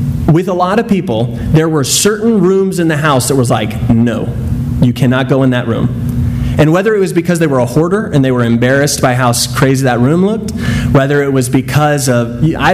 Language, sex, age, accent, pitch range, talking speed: English, male, 30-49, American, 125-160 Hz, 220 wpm